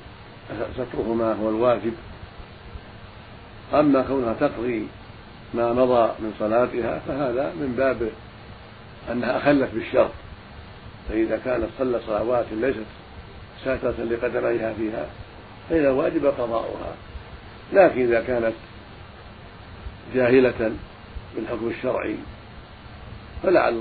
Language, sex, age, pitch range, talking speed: Arabic, male, 50-69, 105-125 Hz, 90 wpm